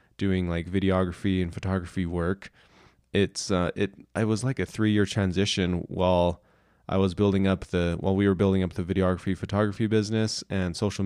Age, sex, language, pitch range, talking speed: 20-39, male, English, 95-115 Hz, 185 wpm